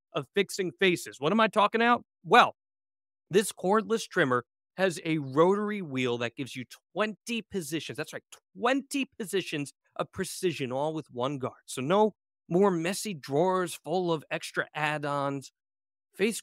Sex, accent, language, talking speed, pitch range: male, American, English, 150 wpm, 125-200 Hz